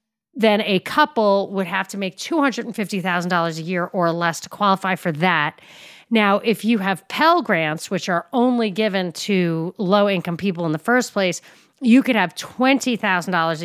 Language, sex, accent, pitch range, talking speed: English, female, American, 180-230 Hz, 165 wpm